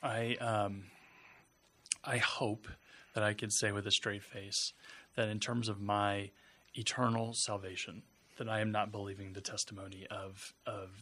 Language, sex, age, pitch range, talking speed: English, male, 20-39, 100-115 Hz, 150 wpm